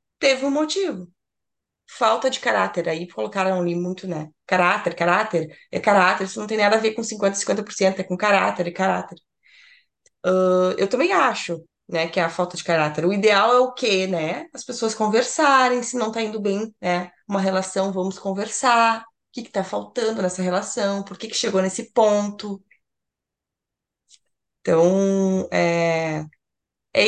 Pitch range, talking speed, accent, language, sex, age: 185-250 Hz, 170 wpm, Brazilian, Portuguese, female, 20-39